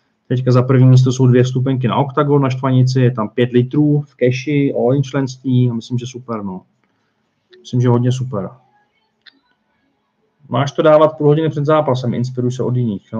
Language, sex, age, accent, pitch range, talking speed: Czech, male, 40-59, native, 120-150 Hz, 175 wpm